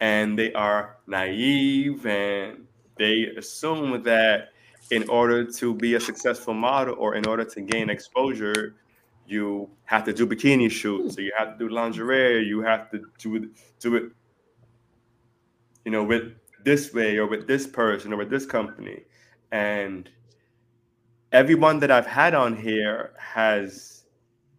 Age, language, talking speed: 20-39, English, 145 wpm